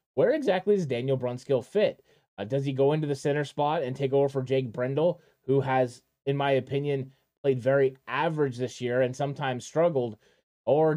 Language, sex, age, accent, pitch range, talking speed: English, male, 20-39, American, 130-145 Hz, 185 wpm